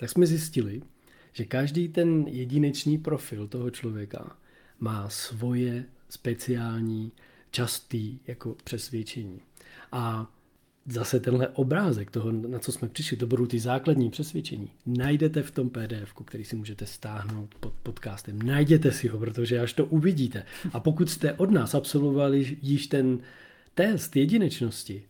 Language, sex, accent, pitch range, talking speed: Czech, male, native, 120-155 Hz, 135 wpm